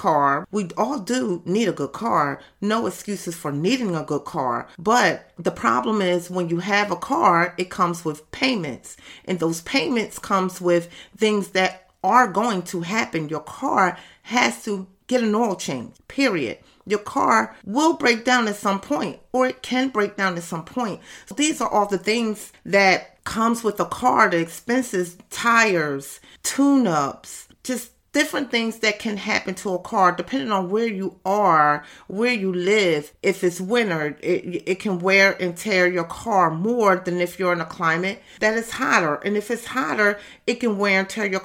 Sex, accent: female, American